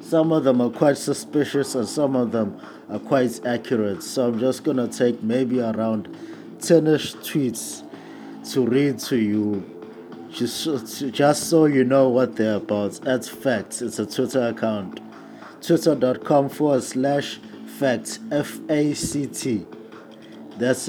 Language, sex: English, male